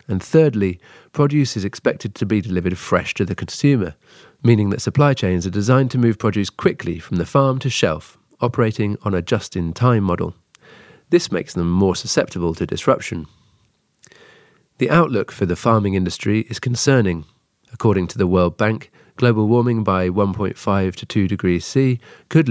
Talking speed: 165 wpm